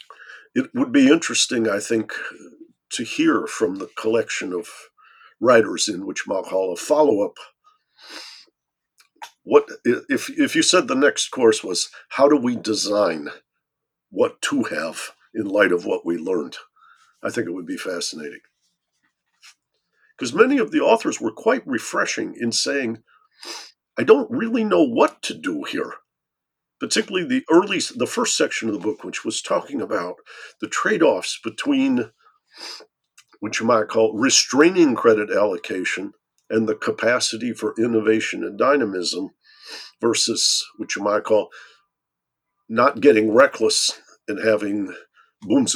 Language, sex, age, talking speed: English, male, 50-69, 135 wpm